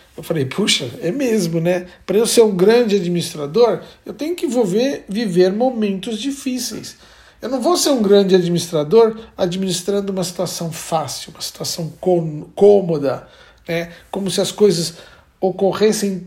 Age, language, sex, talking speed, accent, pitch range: 60-79, Portuguese, male, 140 wpm, Brazilian, 165-215 Hz